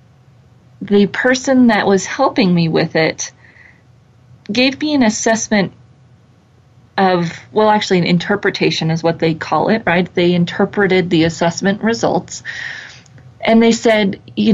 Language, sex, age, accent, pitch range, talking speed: English, female, 30-49, American, 160-190 Hz, 130 wpm